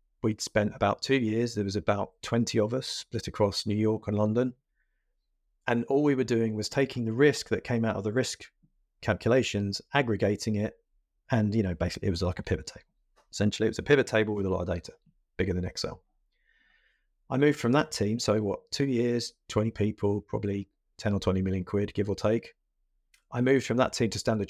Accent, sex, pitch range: British, male, 100-115 Hz